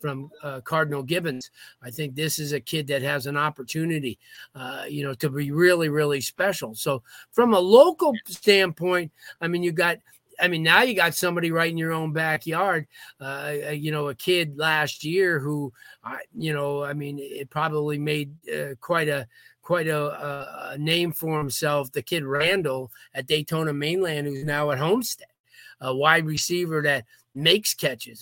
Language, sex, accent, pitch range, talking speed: English, male, American, 145-165 Hz, 175 wpm